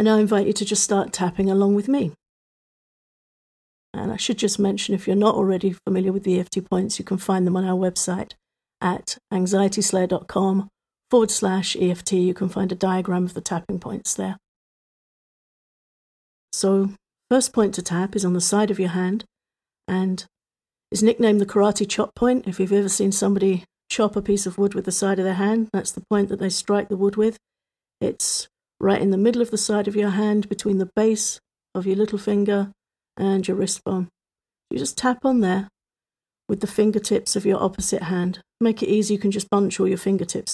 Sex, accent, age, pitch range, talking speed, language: female, British, 50-69, 185-210 Hz, 200 wpm, English